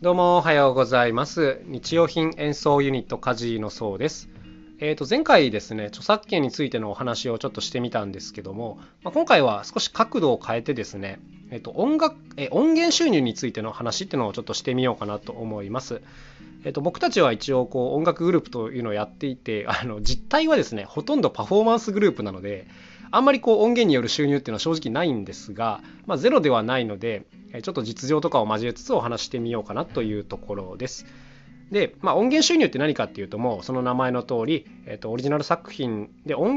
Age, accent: 20-39, native